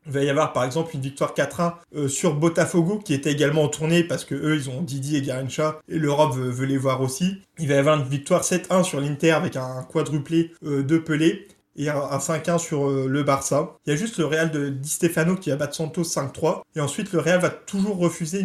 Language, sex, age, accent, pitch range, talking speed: French, male, 20-39, French, 145-175 Hz, 245 wpm